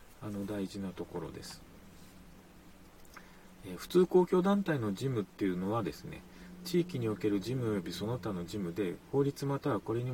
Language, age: Japanese, 40-59